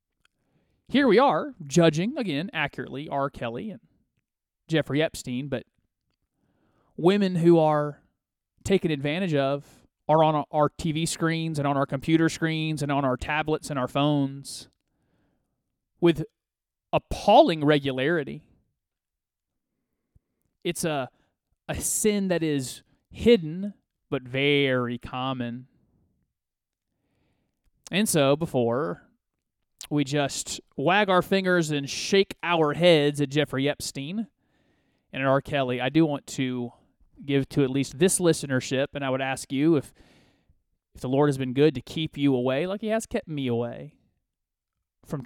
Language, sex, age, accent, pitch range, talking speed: English, male, 30-49, American, 135-170 Hz, 135 wpm